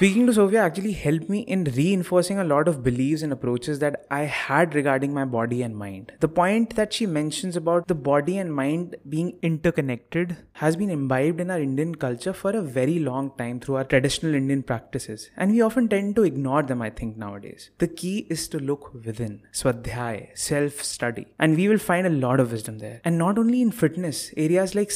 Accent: Indian